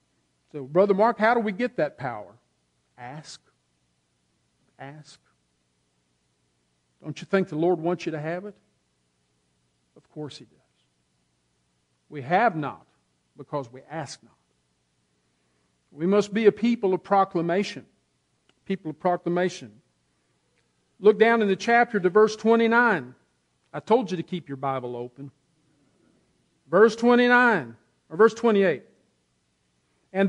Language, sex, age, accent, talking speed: English, male, 50-69, American, 125 wpm